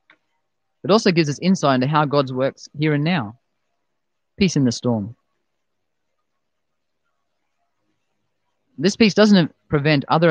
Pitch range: 115-160 Hz